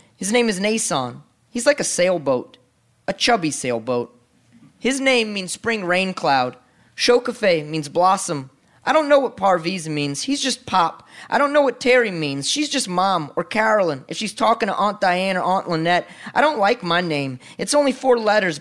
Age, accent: 20-39, American